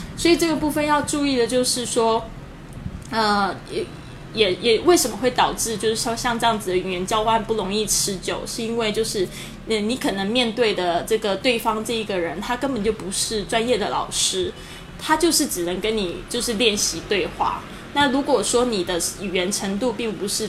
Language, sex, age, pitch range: Chinese, female, 20-39, 190-240 Hz